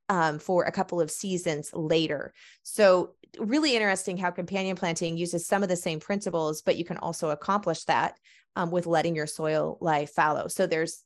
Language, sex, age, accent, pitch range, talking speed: English, female, 20-39, American, 165-195 Hz, 185 wpm